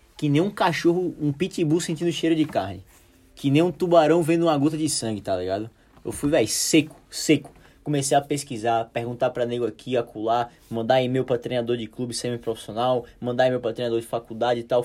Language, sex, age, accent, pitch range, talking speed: Portuguese, male, 20-39, Brazilian, 125-160 Hz, 200 wpm